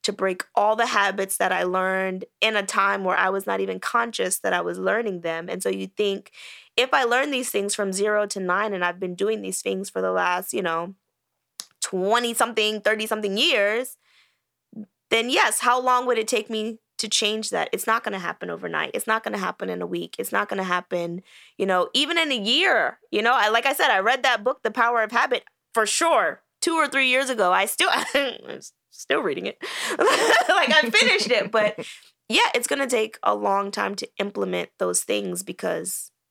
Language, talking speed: English, 215 wpm